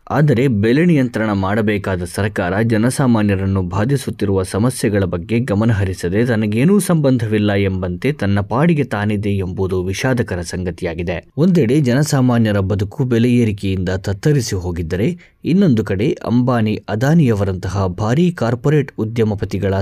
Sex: male